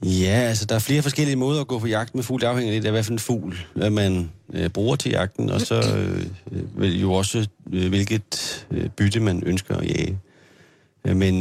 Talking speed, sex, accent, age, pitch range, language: 220 wpm, male, native, 30-49, 90-110 Hz, Danish